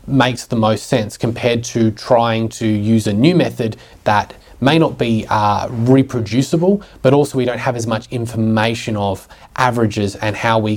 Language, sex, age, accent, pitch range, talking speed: English, male, 20-39, Australian, 105-130 Hz, 175 wpm